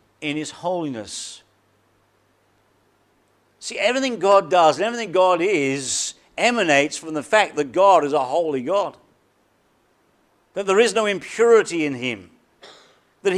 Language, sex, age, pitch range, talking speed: English, male, 50-69, 145-210 Hz, 130 wpm